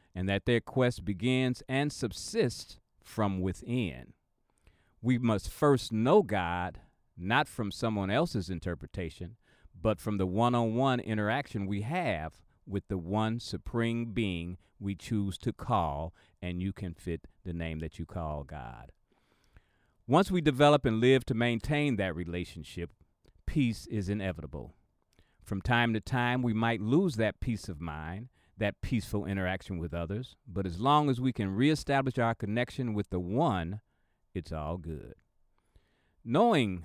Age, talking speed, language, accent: 40-59, 145 wpm, English, American